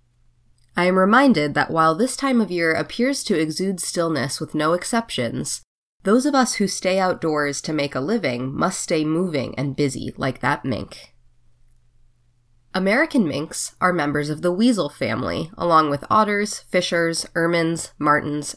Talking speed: 155 wpm